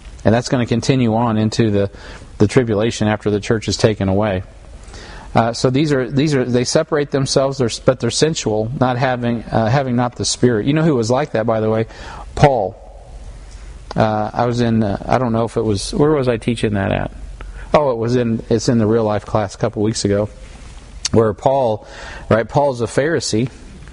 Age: 40-59